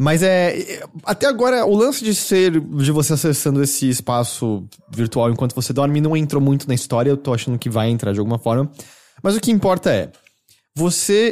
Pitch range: 115-170 Hz